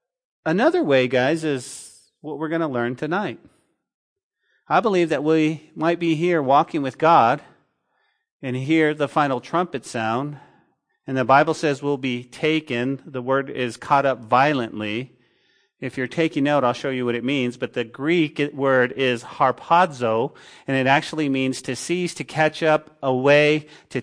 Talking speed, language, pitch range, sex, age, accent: 165 wpm, English, 145-195 Hz, male, 40-59, American